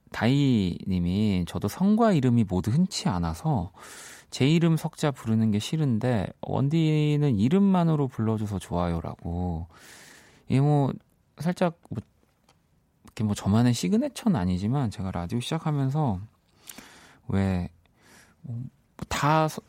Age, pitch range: 30-49, 95-145 Hz